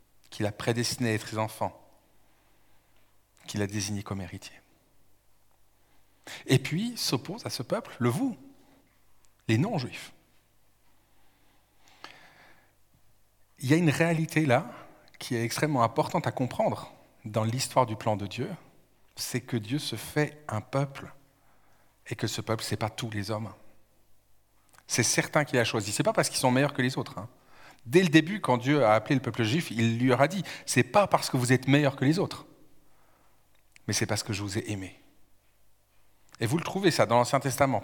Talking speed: 185 wpm